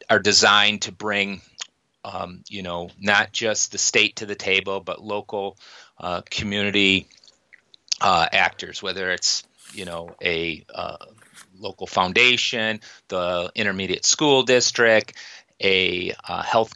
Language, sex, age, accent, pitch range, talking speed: English, male, 30-49, American, 95-110 Hz, 125 wpm